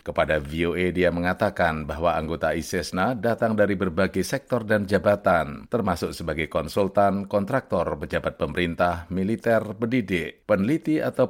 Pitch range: 90-110 Hz